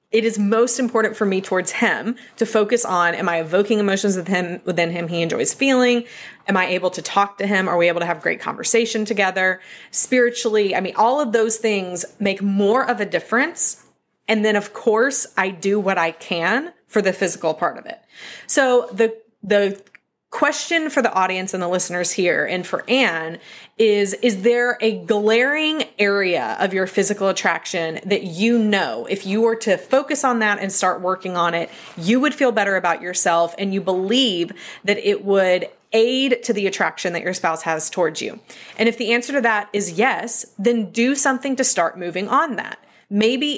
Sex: female